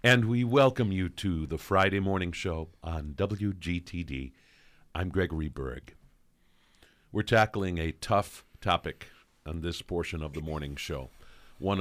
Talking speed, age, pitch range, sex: 135 wpm, 50-69, 75-90 Hz, male